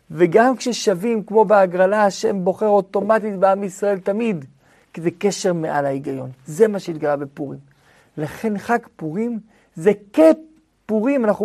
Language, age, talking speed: Hebrew, 50-69, 130 wpm